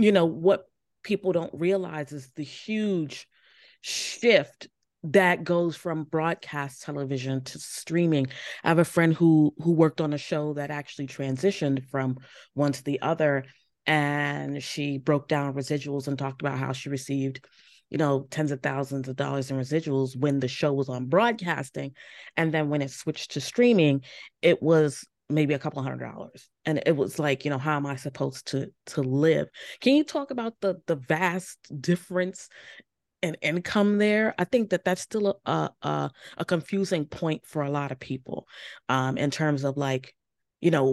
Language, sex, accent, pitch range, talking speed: English, female, American, 140-175 Hz, 175 wpm